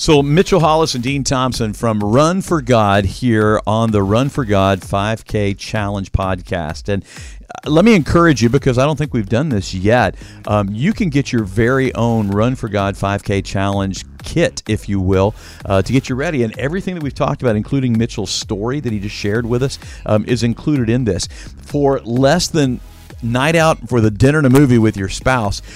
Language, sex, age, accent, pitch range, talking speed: English, male, 50-69, American, 105-135 Hz, 205 wpm